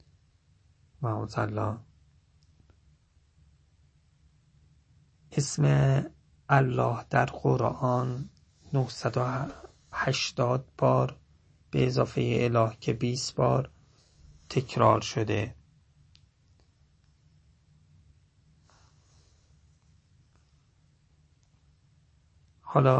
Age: 40-59